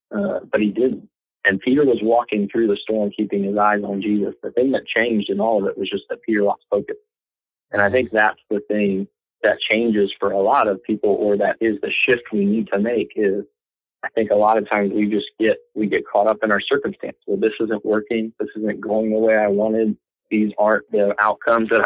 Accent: American